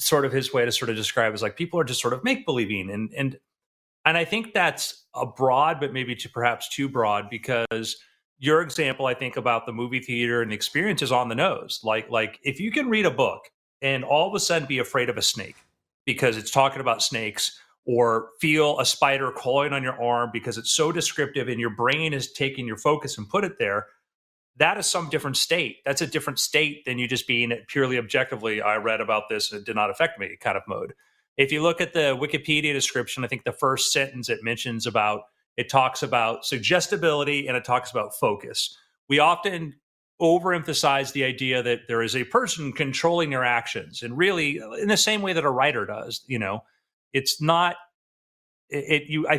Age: 30-49